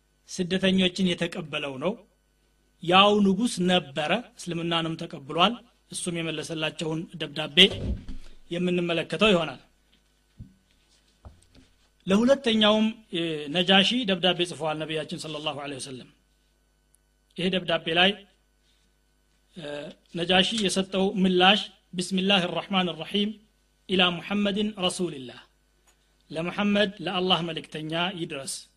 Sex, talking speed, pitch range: male, 45 wpm, 160-200 Hz